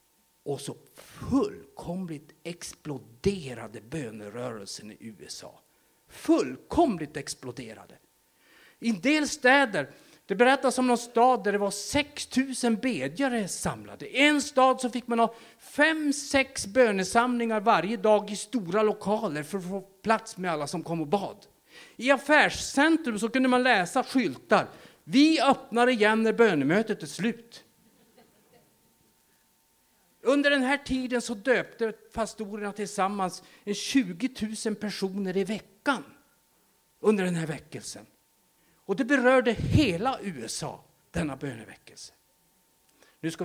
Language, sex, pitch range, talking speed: Swedish, male, 150-245 Hz, 120 wpm